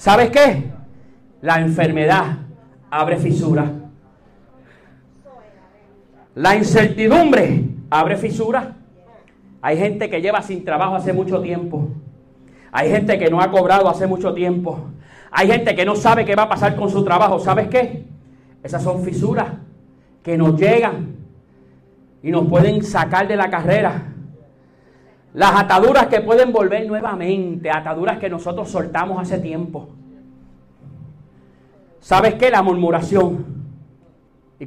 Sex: male